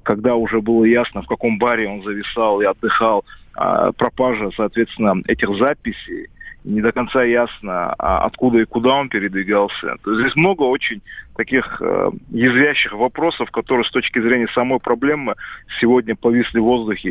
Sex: male